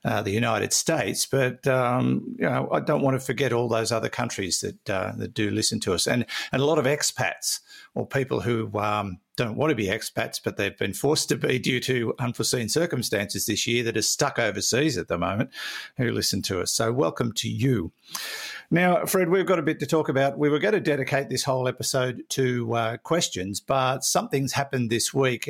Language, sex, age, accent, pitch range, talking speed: English, male, 50-69, Australian, 115-135 Hz, 215 wpm